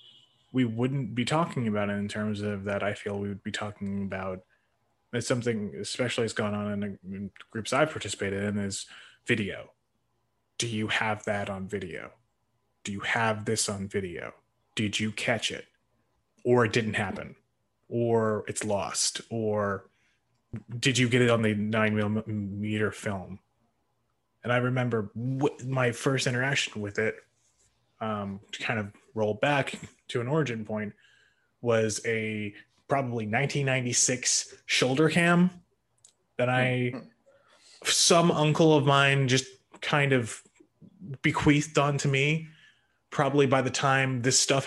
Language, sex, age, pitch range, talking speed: English, male, 20-39, 110-135 Hz, 145 wpm